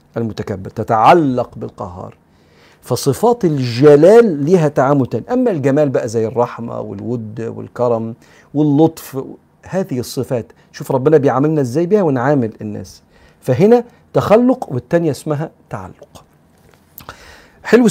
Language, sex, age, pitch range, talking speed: Arabic, male, 50-69, 110-145 Hz, 105 wpm